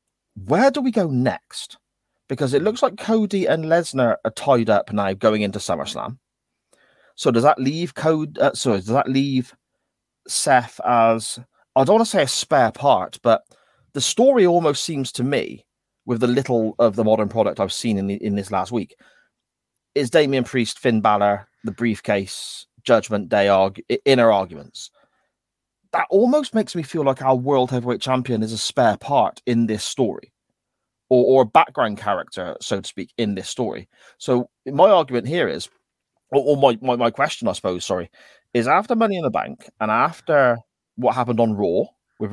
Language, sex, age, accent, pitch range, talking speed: English, male, 30-49, British, 110-160 Hz, 180 wpm